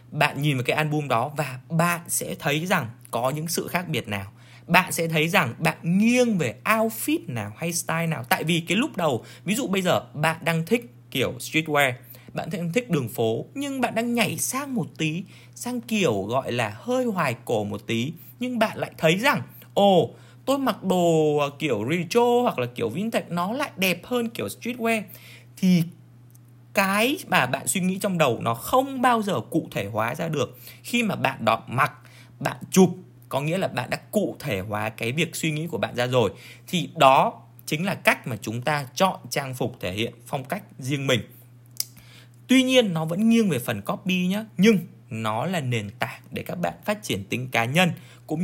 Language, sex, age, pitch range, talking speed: Vietnamese, male, 20-39, 120-185 Hz, 205 wpm